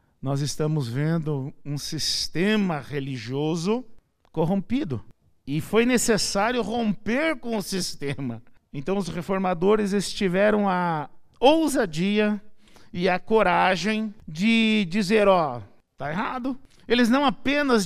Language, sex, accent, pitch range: Portuguese, male, Brazilian, 150-215 Hz